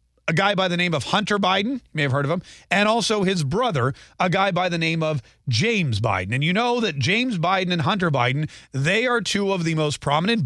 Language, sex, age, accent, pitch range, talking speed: English, male, 40-59, American, 135-185 Hz, 240 wpm